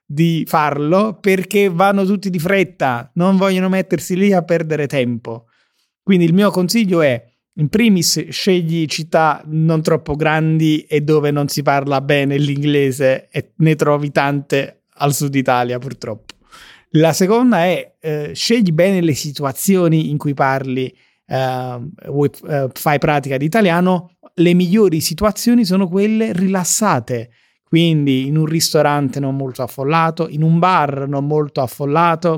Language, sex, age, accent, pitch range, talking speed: Italian, male, 30-49, native, 140-175 Hz, 140 wpm